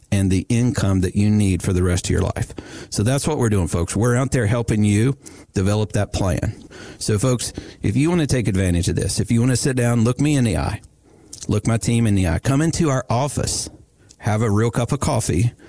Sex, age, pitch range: male, 50-69, 100-120 Hz